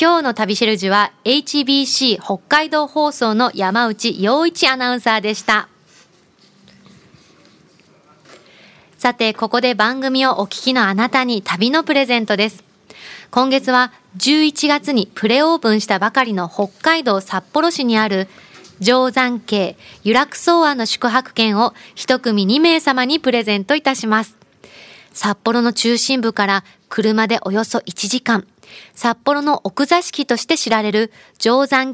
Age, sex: 20-39, female